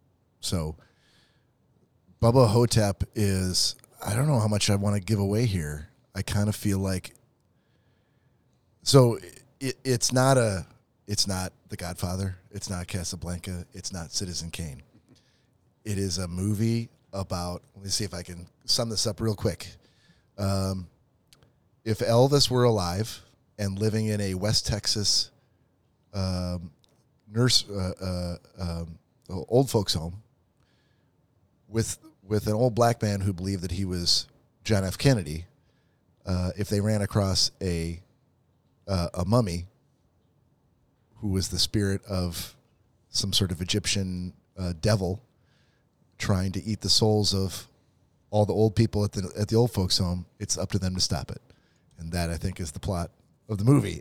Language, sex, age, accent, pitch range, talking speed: English, male, 30-49, American, 95-120 Hz, 150 wpm